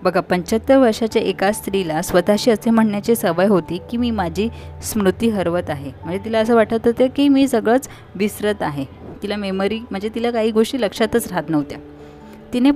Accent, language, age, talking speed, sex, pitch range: native, Marathi, 20-39, 170 wpm, female, 165-220 Hz